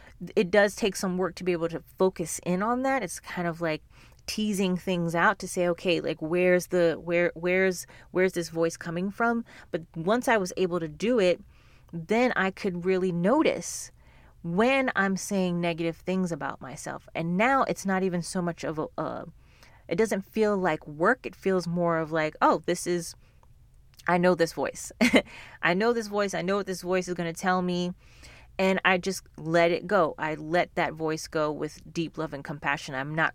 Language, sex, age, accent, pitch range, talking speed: English, female, 30-49, American, 165-195 Hz, 200 wpm